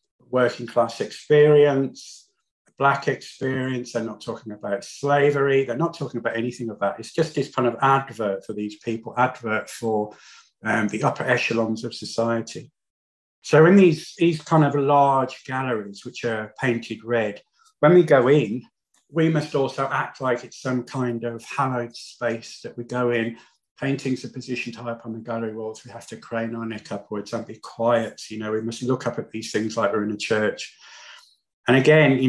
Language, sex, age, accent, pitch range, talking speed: English, male, 50-69, British, 115-135 Hz, 190 wpm